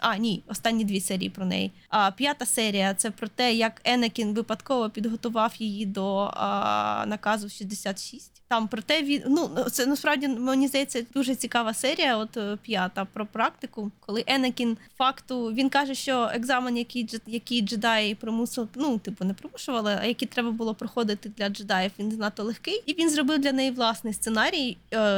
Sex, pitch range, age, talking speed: female, 220-255 Hz, 20-39, 165 wpm